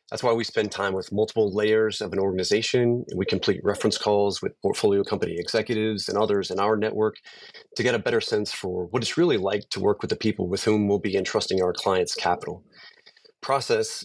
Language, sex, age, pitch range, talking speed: English, male, 30-49, 95-110 Hz, 205 wpm